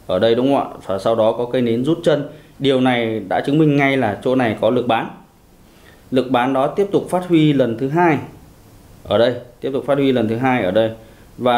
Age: 20-39